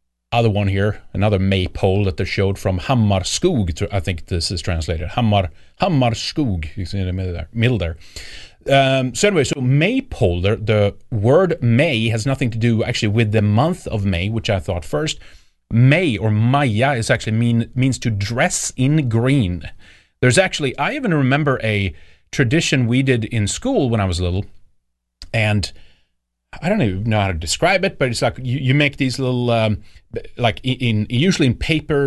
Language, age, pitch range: English, 30-49, 100-135 Hz